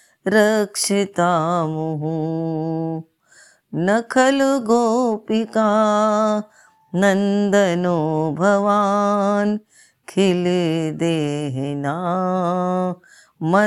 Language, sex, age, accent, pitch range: Hindi, female, 30-49, native, 165-210 Hz